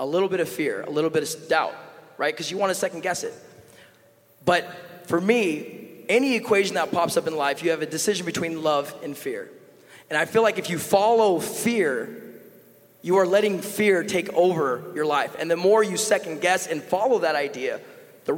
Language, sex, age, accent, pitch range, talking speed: English, male, 20-39, American, 160-210 Hz, 200 wpm